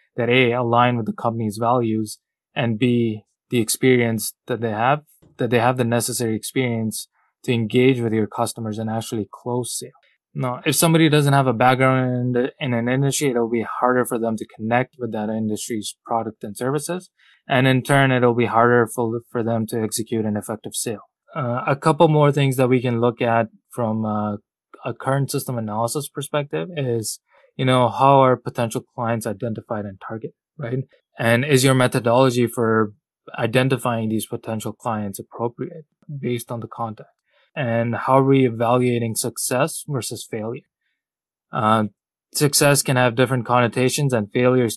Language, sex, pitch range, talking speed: English, male, 110-130 Hz, 170 wpm